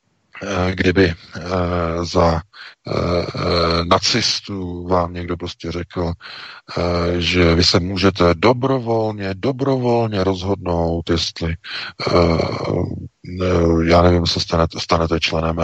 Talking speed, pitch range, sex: 80 wpm, 85-105 Hz, male